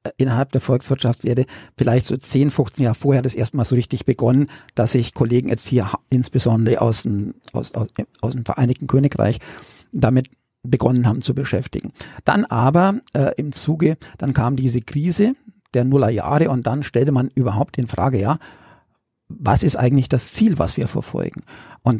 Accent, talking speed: German, 170 wpm